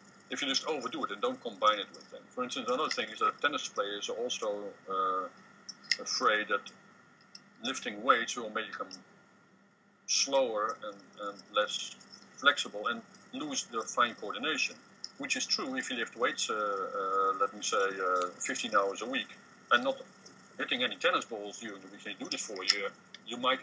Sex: male